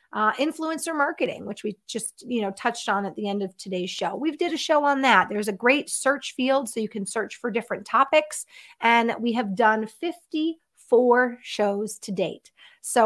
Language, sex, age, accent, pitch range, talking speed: English, female, 30-49, American, 205-270 Hz, 200 wpm